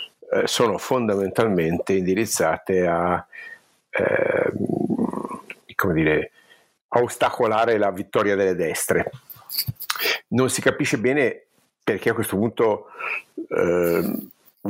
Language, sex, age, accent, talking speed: Italian, male, 50-69, native, 80 wpm